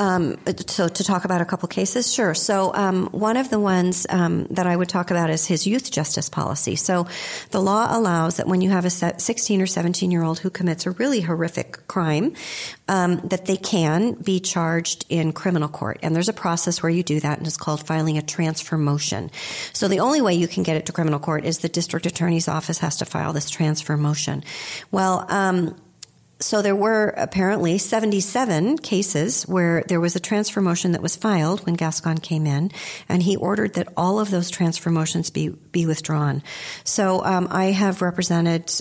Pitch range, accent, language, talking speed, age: 160-190 Hz, American, English, 200 wpm, 40-59